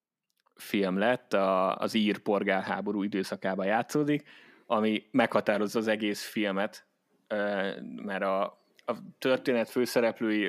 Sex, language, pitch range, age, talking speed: male, Hungarian, 100-110 Hz, 20-39, 95 wpm